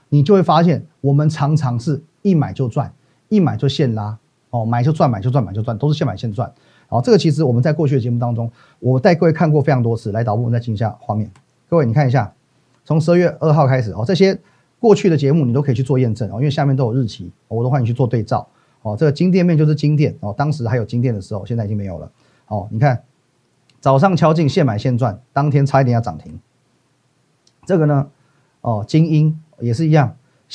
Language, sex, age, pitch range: Chinese, male, 30-49, 125-155 Hz